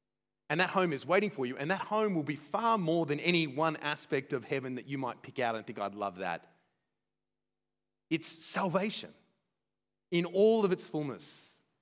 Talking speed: 190 wpm